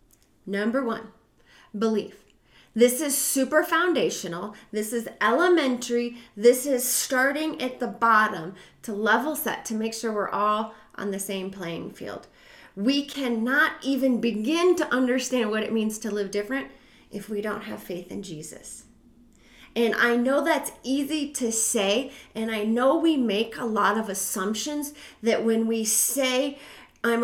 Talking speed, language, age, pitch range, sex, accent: 150 wpm, English, 30-49, 210-260 Hz, female, American